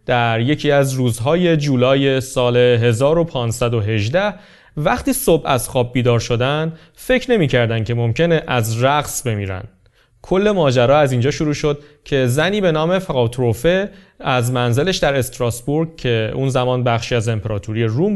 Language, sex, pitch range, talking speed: Persian, male, 120-165 Hz, 140 wpm